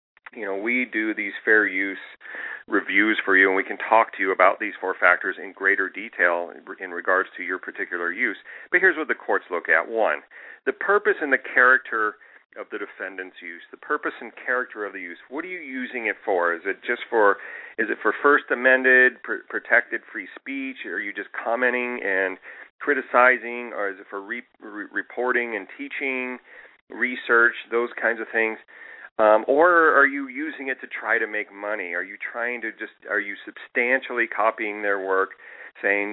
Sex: male